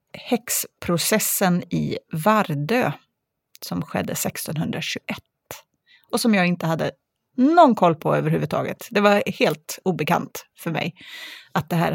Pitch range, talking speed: 165-210 Hz, 120 wpm